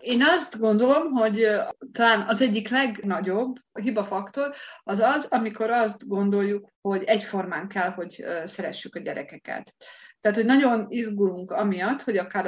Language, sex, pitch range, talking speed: Hungarian, female, 190-230 Hz, 135 wpm